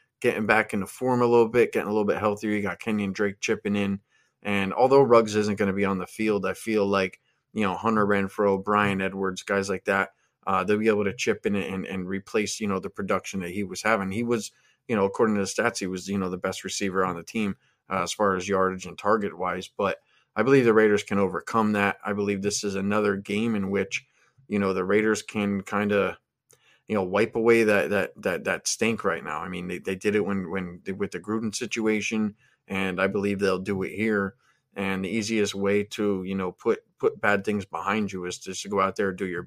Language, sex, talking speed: English, male, 240 wpm